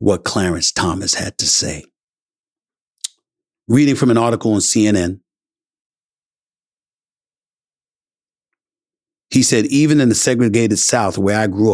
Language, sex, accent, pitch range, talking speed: English, male, American, 110-165 Hz, 115 wpm